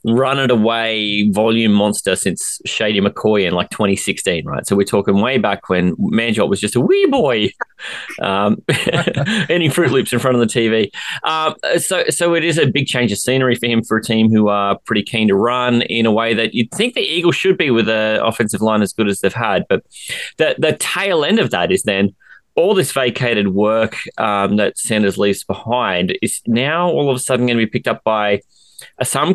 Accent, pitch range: Australian, 110-150 Hz